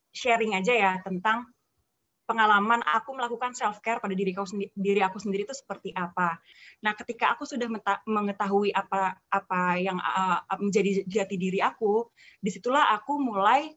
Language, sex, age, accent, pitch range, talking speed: Indonesian, female, 20-39, native, 200-245 Hz, 150 wpm